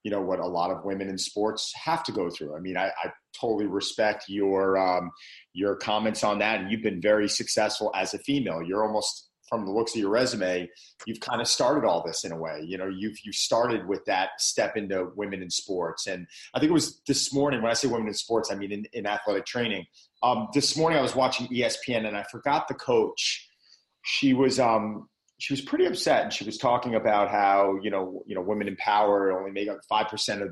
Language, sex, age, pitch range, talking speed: English, male, 30-49, 100-120 Hz, 230 wpm